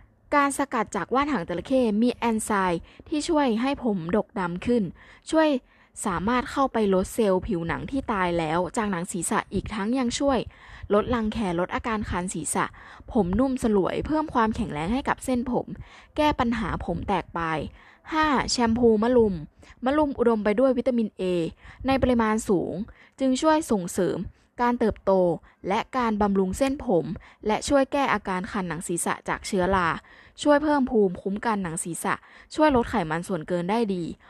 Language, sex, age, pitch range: Thai, female, 20-39, 190-260 Hz